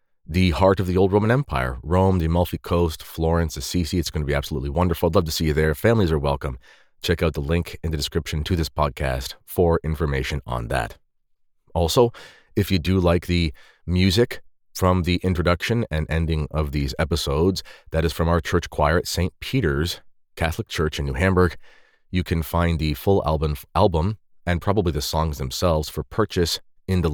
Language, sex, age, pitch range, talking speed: English, male, 30-49, 80-90 Hz, 190 wpm